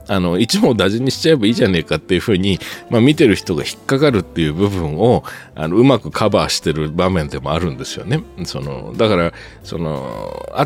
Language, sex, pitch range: Japanese, male, 85-125 Hz